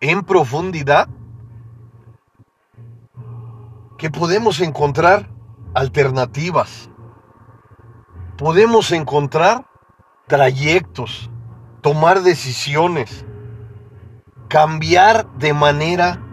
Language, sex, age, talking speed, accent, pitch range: Spanish, male, 40-59, 50 wpm, Mexican, 115-170 Hz